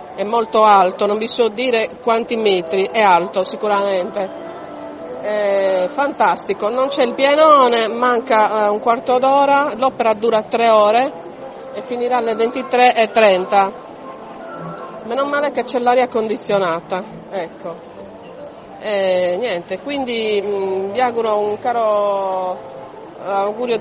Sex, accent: female, native